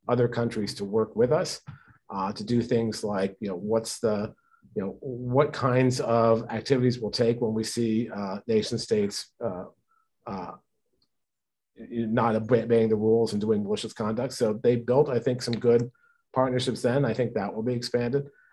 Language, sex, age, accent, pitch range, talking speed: English, male, 40-59, American, 110-150 Hz, 175 wpm